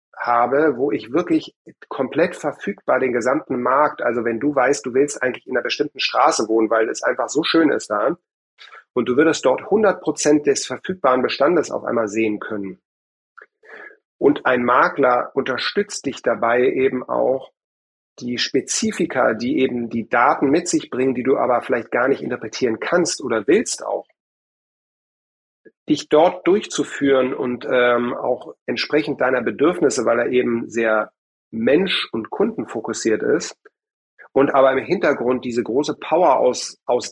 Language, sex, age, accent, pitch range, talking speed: German, male, 40-59, German, 120-145 Hz, 155 wpm